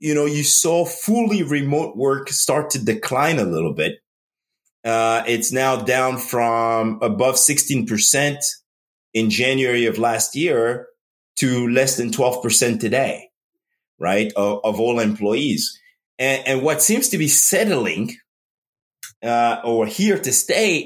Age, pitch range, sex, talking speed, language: 30-49, 115-150 Hz, male, 135 wpm, English